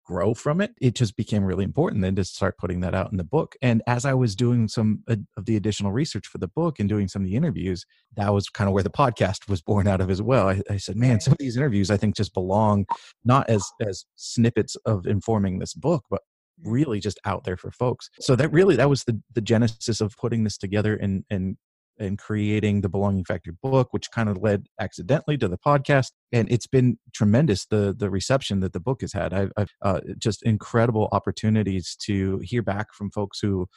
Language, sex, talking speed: English, male, 225 wpm